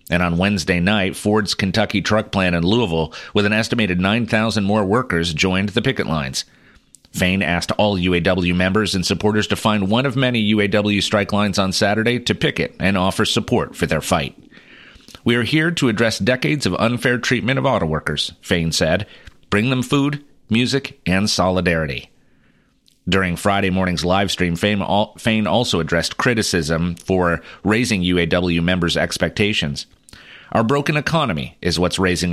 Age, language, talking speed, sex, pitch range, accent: 40-59, English, 155 wpm, male, 90-115 Hz, American